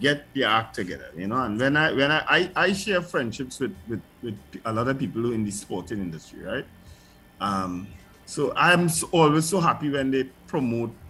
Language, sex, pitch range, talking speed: English, male, 95-135 Hz, 200 wpm